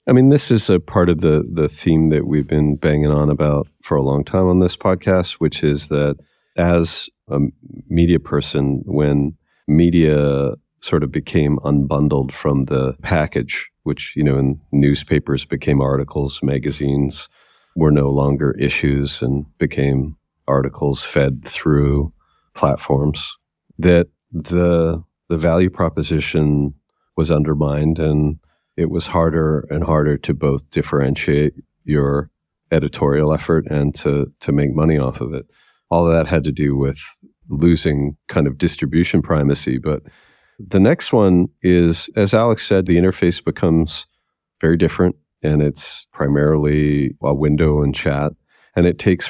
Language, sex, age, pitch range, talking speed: English, male, 40-59, 70-85 Hz, 145 wpm